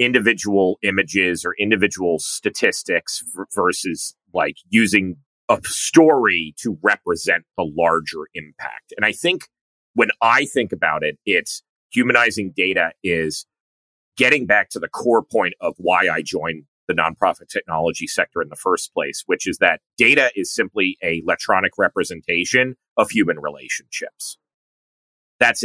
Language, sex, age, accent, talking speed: English, male, 30-49, American, 135 wpm